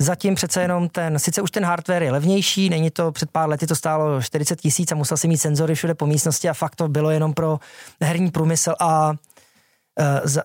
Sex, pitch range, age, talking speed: male, 150-175 Hz, 20-39, 220 wpm